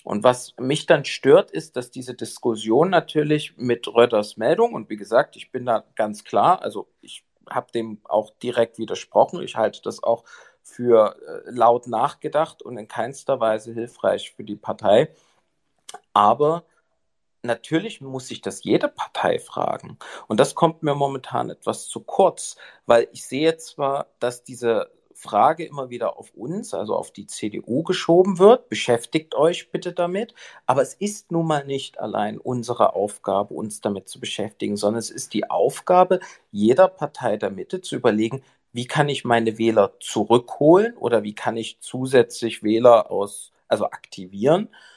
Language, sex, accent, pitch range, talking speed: German, male, German, 115-150 Hz, 160 wpm